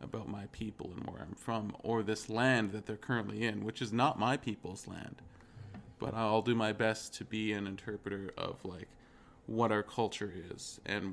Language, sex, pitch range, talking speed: English, male, 100-125 Hz, 195 wpm